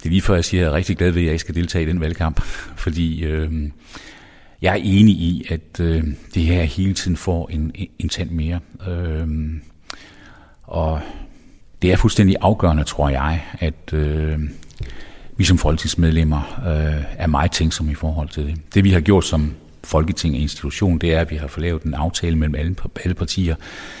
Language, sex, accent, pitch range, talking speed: Danish, male, native, 80-90 Hz, 195 wpm